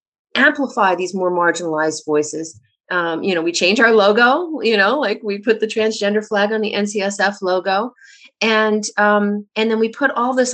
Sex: female